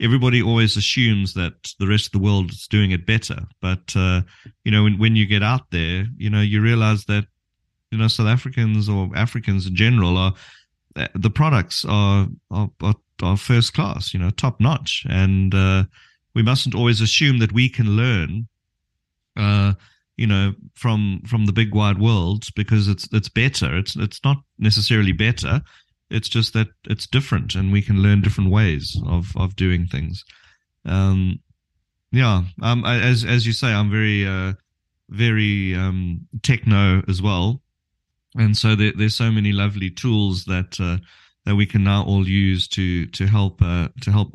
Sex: male